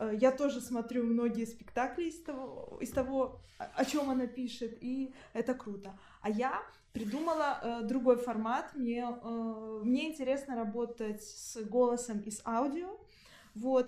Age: 20-39